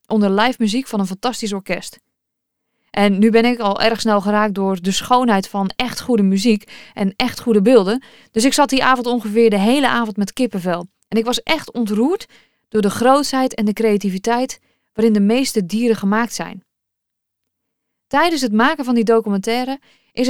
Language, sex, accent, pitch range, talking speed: Dutch, female, Dutch, 210-260 Hz, 180 wpm